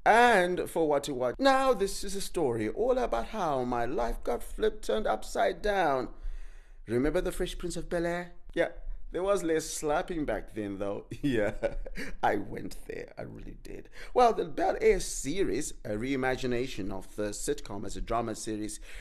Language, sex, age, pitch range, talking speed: English, male, 30-49, 110-165 Hz, 170 wpm